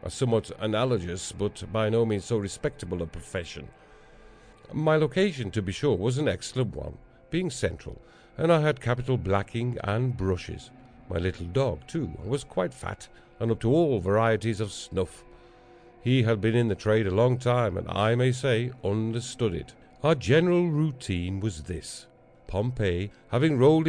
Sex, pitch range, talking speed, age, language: male, 100-135 Hz, 165 wpm, 50-69, English